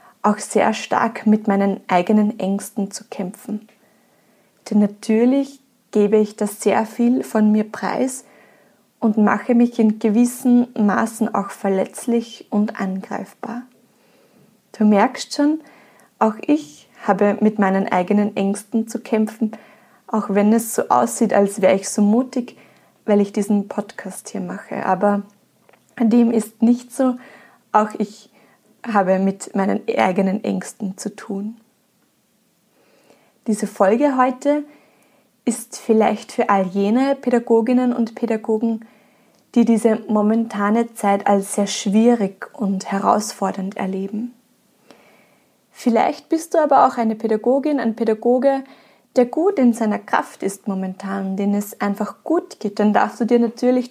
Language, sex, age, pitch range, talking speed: German, female, 20-39, 205-240 Hz, 130 wpm